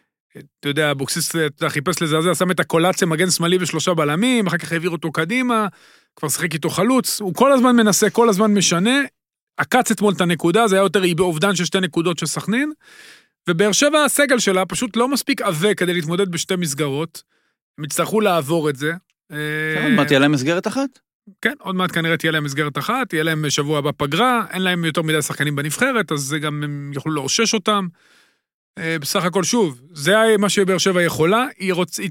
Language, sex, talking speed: Hebrew, male, 160 wpm